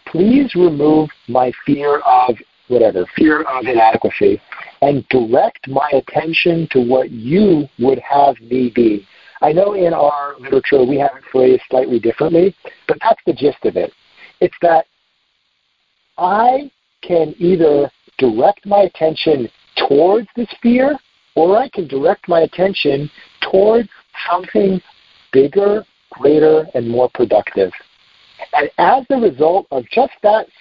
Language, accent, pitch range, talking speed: English, American, 140-205 Hz, 135 wpm